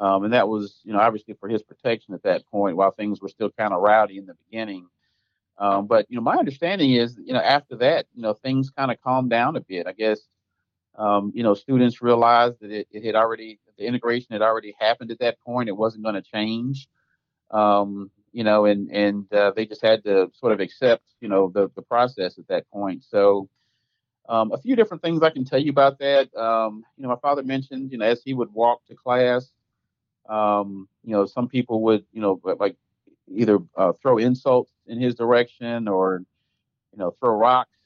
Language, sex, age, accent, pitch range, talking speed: English, male, 40-59, American, 105-125 Hz, 215 wpm